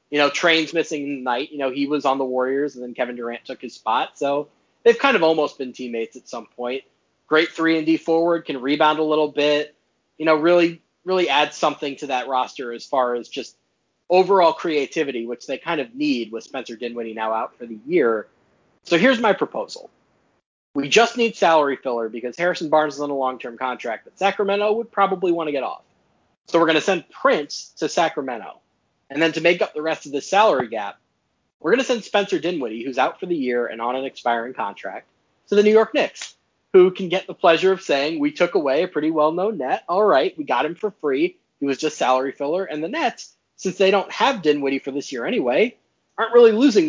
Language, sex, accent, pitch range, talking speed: English, male, American, 135-185 Hz, 220 wpm